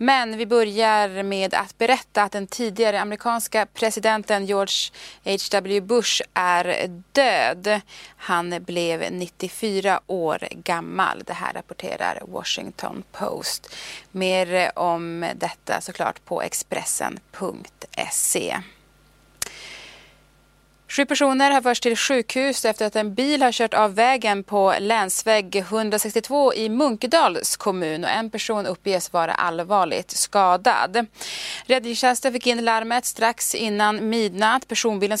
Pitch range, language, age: 195-240 Hz, Swedish, 30-49